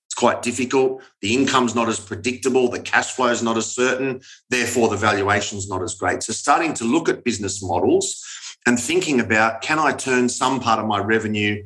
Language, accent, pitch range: English, Australian, 110-130 Hz